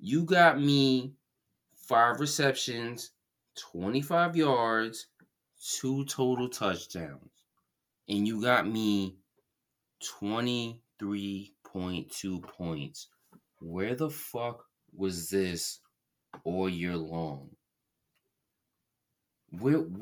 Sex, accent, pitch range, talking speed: male, American, 85-130 Hz, 75 wpm